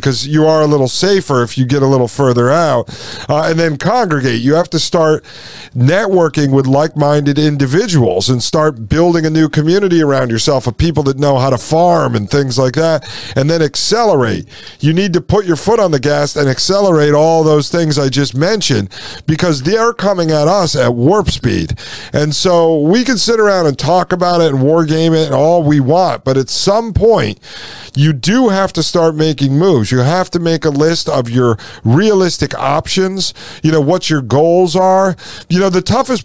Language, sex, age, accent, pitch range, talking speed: English, male, 50-69, American, 140-170 Hz, 205 wpm